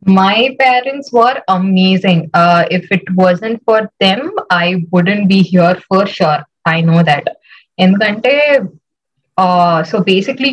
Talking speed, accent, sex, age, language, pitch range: 130 wpm, native, female, 20-39, Telugu, 170-215 Hz